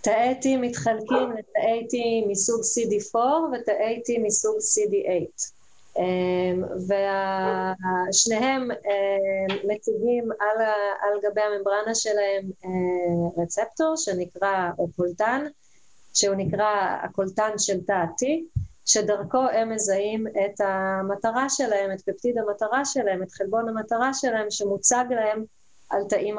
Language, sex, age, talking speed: Hebrew, female, 30-49, 105 wpm